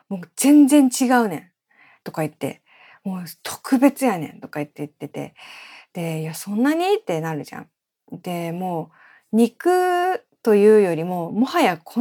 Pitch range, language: 165-235 Hz, Japanese